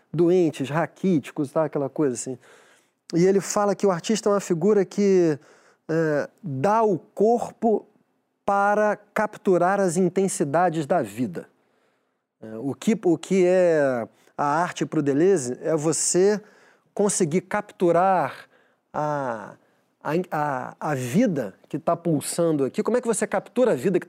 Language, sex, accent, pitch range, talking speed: Portuguese, male, Brazilian, 160-215 Hz, 130 wpm